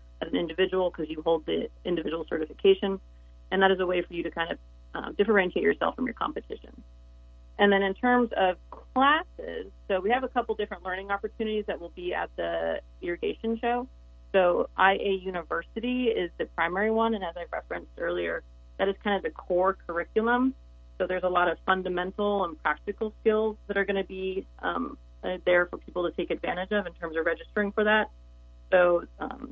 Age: 30-49